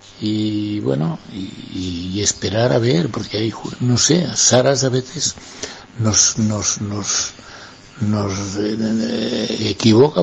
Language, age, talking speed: Spanish, 60-79, 125 wpm